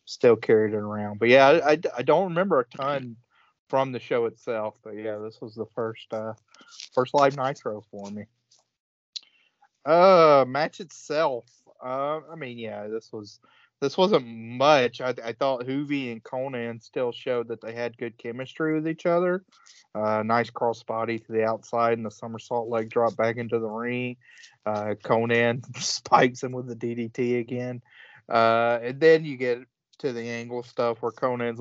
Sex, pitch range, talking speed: male, 110-125 Hz, 175 wpm